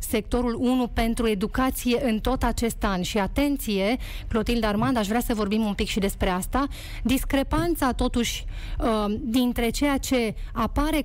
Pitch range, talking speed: 220-260 Hz, 145 wpm